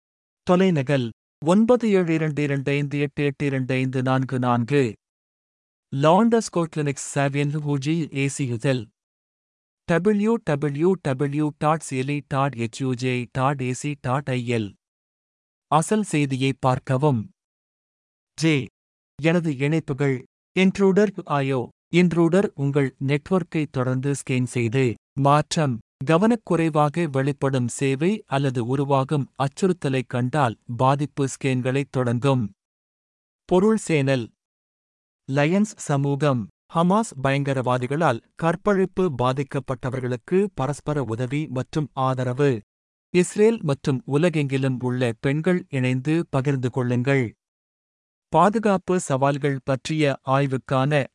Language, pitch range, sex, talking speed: Tamil, 130-155 Hz, male, 75 wpm